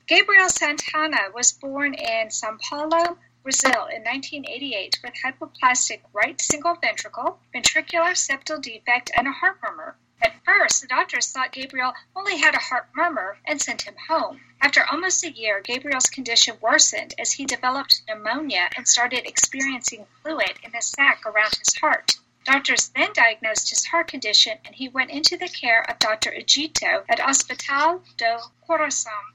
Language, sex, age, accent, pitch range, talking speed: English, female, 50-69, American, 245-320 Hz, 155 wpm